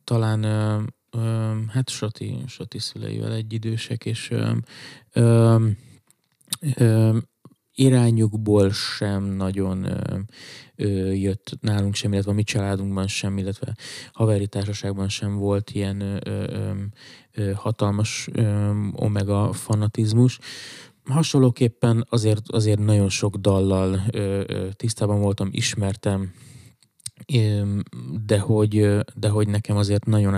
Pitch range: 100-120 Hz